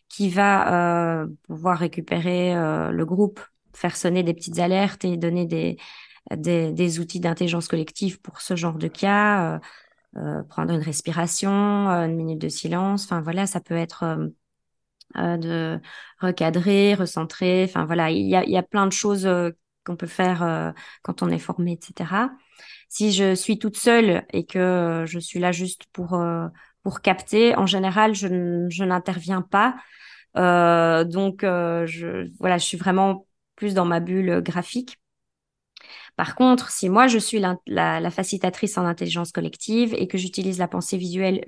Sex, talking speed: female, 170 wpm